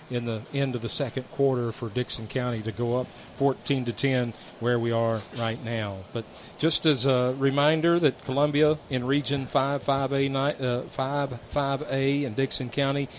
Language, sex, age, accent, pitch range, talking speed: English, male, 40-59, American, 120-145 Hz, 180 wpm